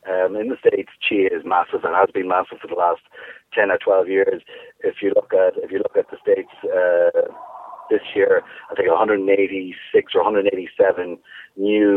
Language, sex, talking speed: English, male, 185 wpm